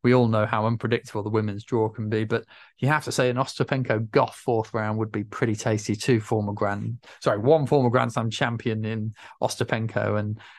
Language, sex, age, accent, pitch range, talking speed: English, male, 20-39, British, 105-130 Hz, 200 wpm